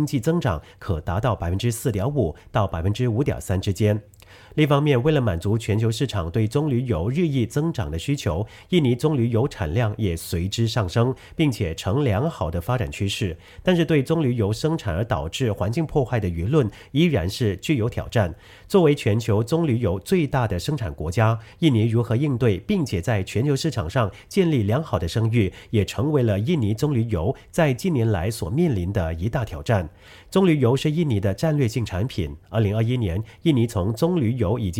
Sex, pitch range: male, 100-145 Hz